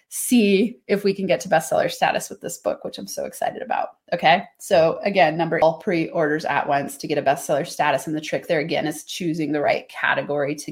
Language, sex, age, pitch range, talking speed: English, female, 30-49, 155-215 Hz, 225 wpm